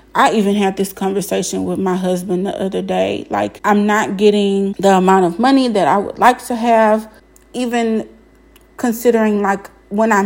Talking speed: 175 wpm